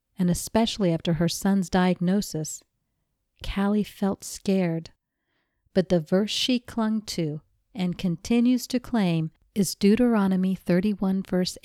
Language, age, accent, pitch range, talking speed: English, 50-69, American, 175-205 Hz, 120 wpm